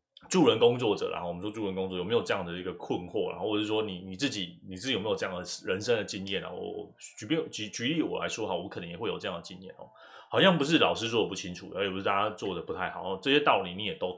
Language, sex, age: Chinese, male, 20-39